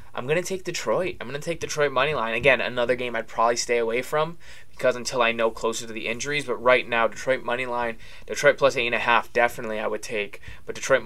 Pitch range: 120-140 Hz